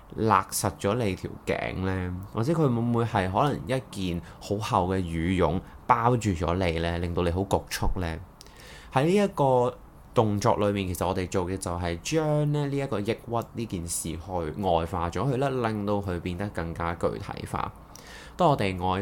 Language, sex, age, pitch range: Chinese, male, 20-39, 85-115 Hz